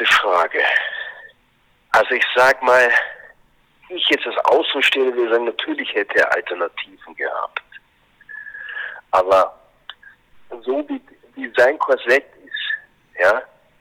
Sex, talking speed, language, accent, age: male, 105 wpm, German, German, 40-59